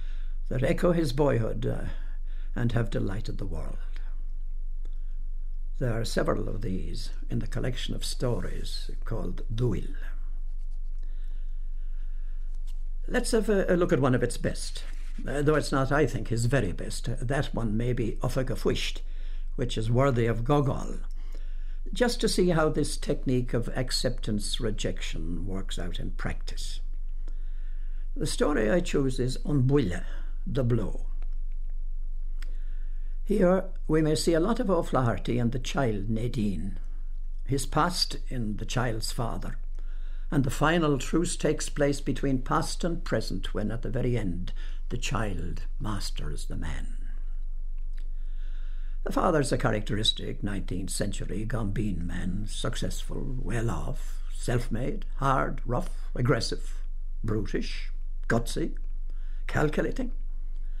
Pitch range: 95-140 Hz